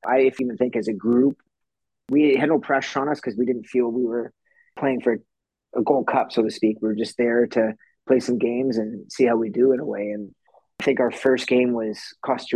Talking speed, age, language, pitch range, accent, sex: 240 wpm, 30-49, English, 115-130 Hz, American, male